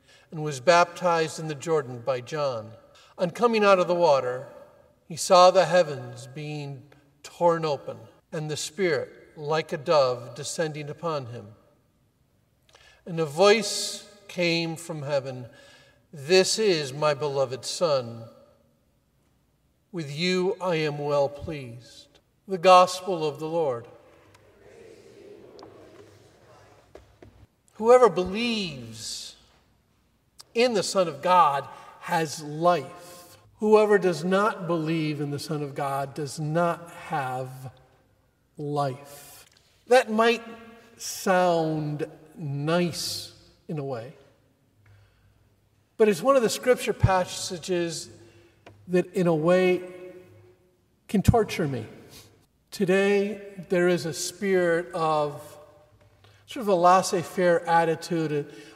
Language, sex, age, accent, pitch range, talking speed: English, male, 50-69, American, 140-185 Hz, 110 wpm